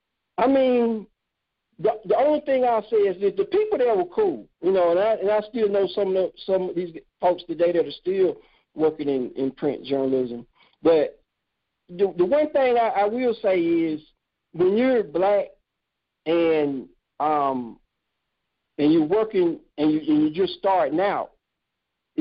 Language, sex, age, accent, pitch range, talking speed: English, male, 50-69, American, 160-235 Hz, 175 wpm